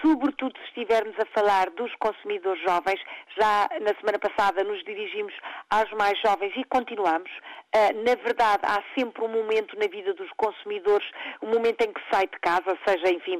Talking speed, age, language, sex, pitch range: 170 wpm, 50-69, Portuguese, female, 205-295 Hz